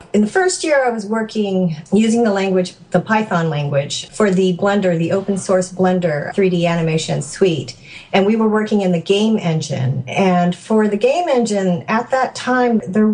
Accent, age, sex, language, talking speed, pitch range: American, 40-59, female, English, 185 wpm, 170-205 Hz